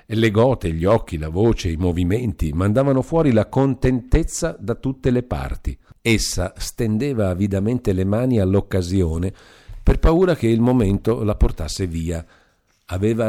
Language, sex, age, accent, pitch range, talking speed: Italian, male, 50-69, native, 85-115 Hz, 140 wpm